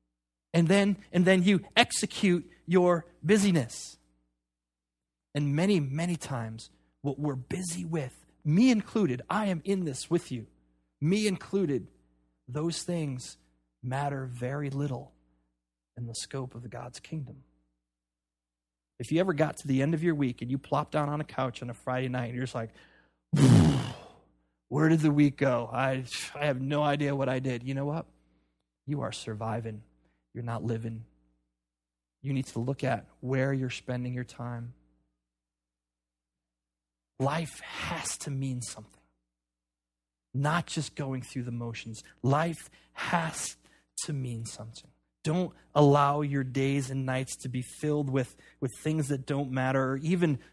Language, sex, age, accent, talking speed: English, male, 30-49, American, 150 wpm